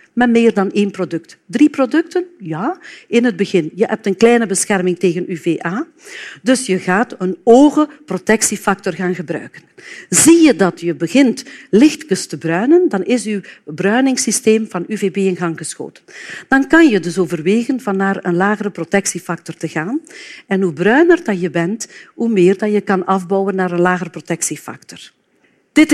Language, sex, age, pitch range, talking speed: Dutch, female, 50-69, 180-250 Hz, 160 wpm